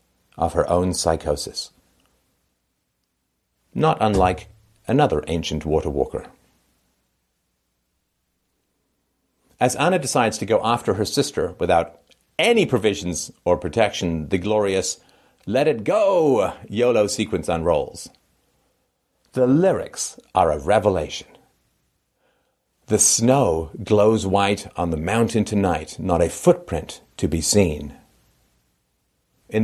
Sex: male